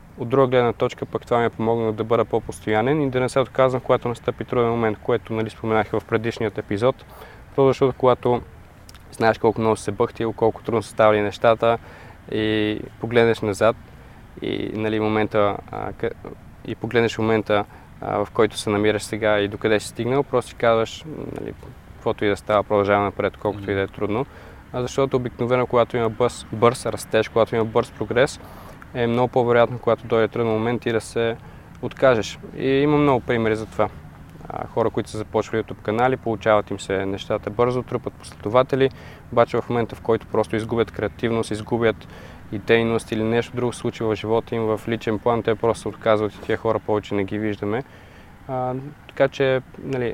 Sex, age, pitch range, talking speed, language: male, 20-39, 105-120 Hz, 185 wpm, Bulgarian